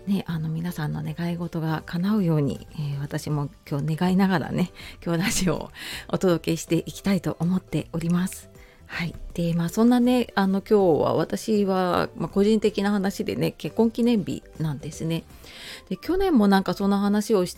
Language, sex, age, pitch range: Japanese, female, 30-49, 160-220 Hz